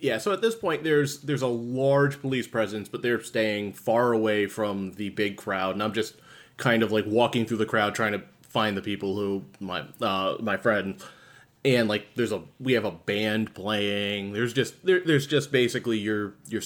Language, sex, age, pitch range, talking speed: English, male, 20-39, 105-130 Hz, 205 wpm